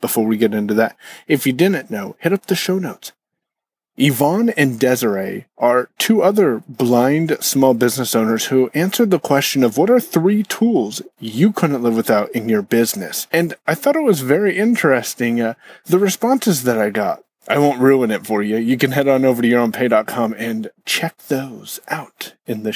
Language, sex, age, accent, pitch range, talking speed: English, male, 30-49, American, 120-180 Hz, 190 wpm